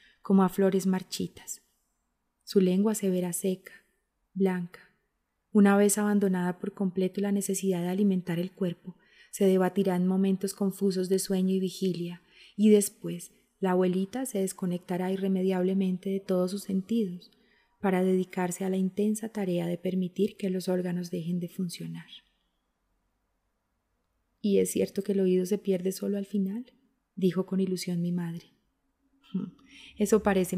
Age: 20-39